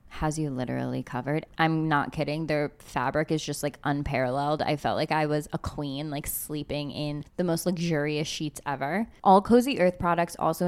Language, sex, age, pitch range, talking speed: English, female, 20-39, 155-205 Hz, 185 wpm